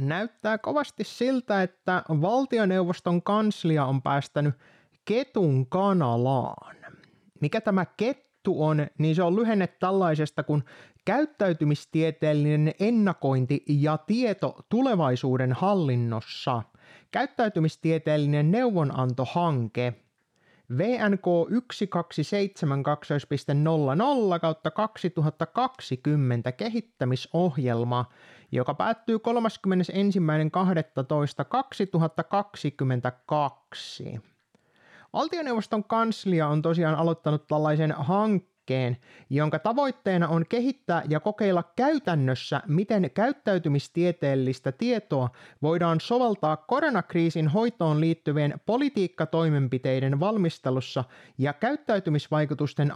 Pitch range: 145-205 Hz